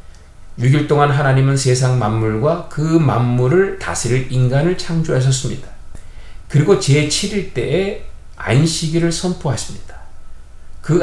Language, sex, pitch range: Korean, male, 105-170 Hz